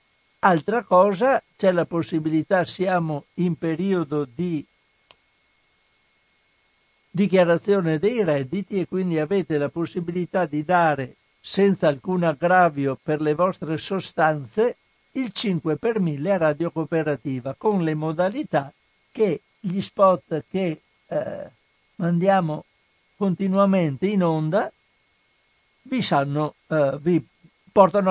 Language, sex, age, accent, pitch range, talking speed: Italian, male, 60-79, native, 155-190 Hz, 100 wpm